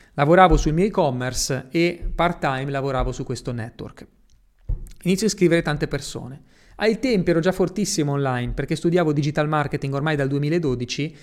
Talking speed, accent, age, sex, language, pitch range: 150 wpm, native, 30-49, male, Italian, 140-170 Hz